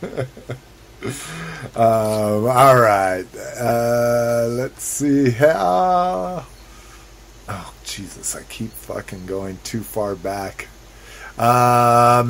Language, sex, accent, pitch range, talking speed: English, male, American, 110-130 Hz, 85 wpm